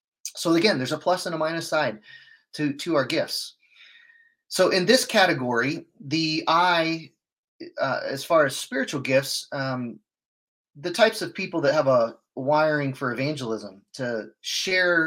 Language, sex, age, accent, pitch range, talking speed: English, male, 30-49, American, 115-160 Hz, 150 wpm